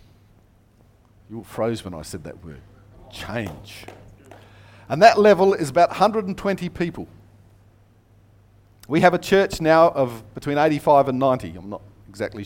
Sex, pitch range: male, 105-155 Hz